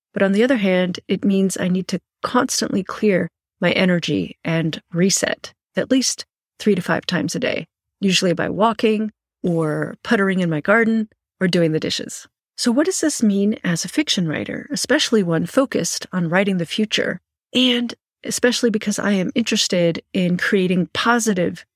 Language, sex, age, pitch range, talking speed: English, female, 40-59, 180-230 Hz, 170 wpm